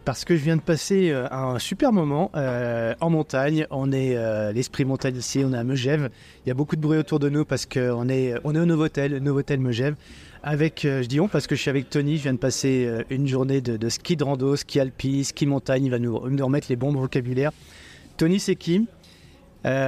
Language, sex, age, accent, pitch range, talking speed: French, male, 30-49, French, 130-150 Hz, 235 wpm